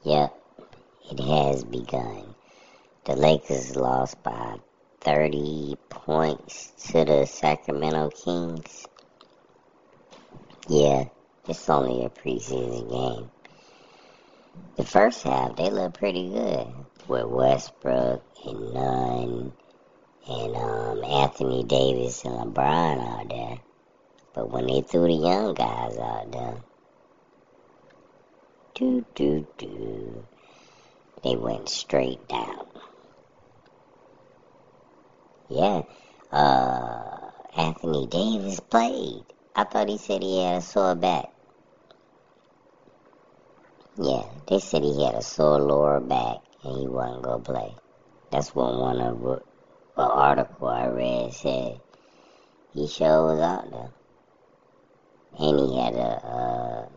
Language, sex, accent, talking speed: English, male, American, 110 wpm